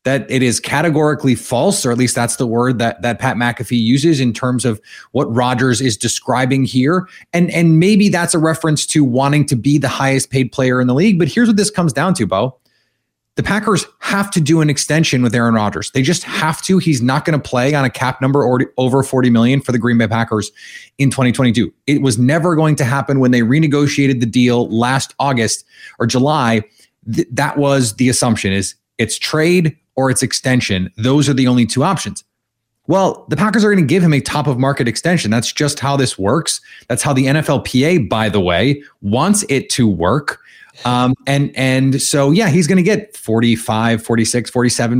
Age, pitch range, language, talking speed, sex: 30-49, 120-150 Hz, English, 210 wpm, male